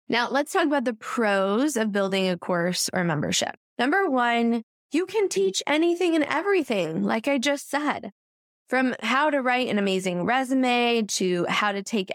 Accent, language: American, English